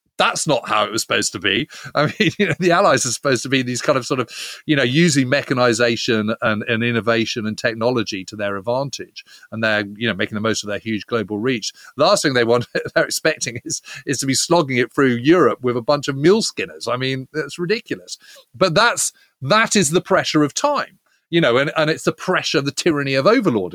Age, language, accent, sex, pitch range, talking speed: 30-49, English, British, male, 115-155 Hz, 235 wpm